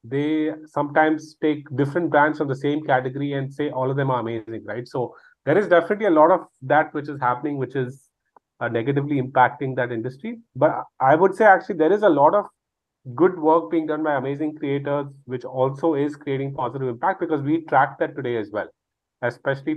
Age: 30-49